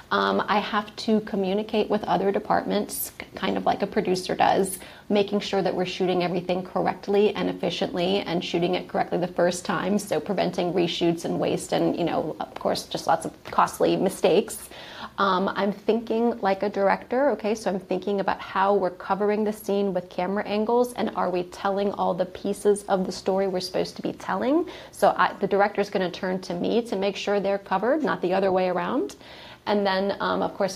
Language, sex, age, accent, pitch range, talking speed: English, female, 30-49, American, 185-210 Hz, 195 wpm